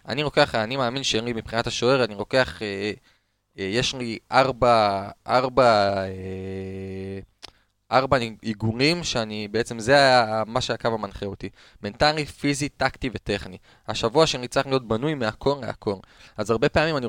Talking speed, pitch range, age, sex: 145 wpm, 110-140 Hz, 20-39, male